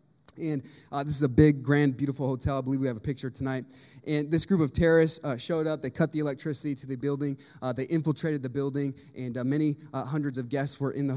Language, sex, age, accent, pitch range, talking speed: English, male, 20-39, American, 135-160 Hz, 245 wpm